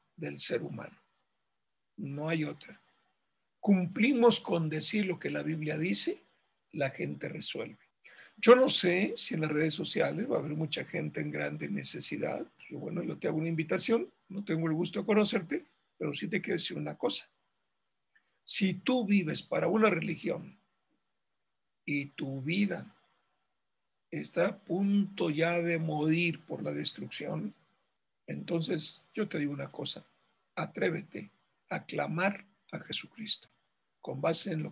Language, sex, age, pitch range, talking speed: Spanish, male, 60-79, 160-210 Hz, 145 wpm